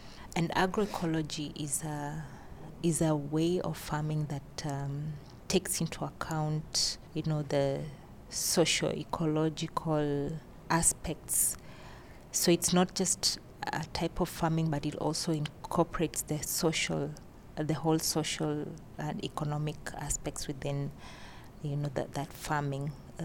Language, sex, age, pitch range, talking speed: English, female, 30-49, 145-160 Hz, 120 wpm